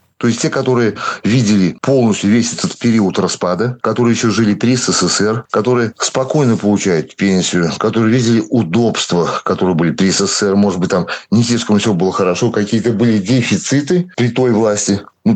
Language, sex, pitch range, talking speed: Russian, male, 100-125 Hz, 160 wpm